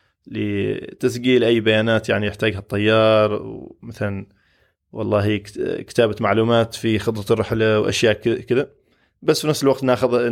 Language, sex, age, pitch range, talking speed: Arabic, male, 20-39, 105-120 Hz, 115 wpm